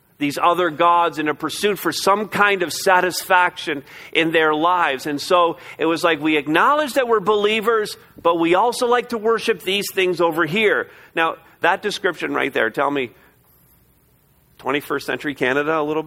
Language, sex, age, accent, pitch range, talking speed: English, male, 40-59, American, 150-200 Hz, 170 wpm